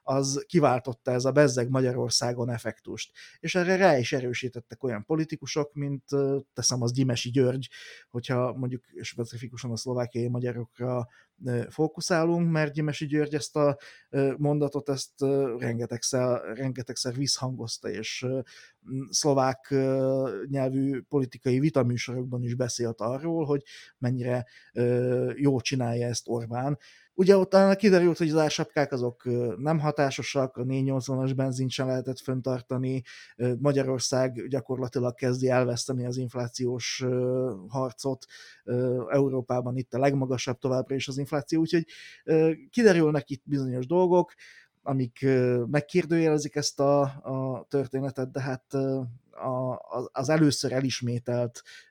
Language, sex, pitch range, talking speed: Hungarian, male, 125-140 Hz, 110 wpm